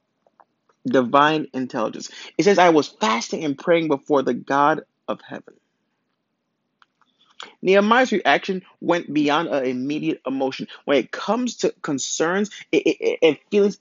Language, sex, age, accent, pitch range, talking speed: English, male, 30-49, American, 140-205 Hz, 120 wpm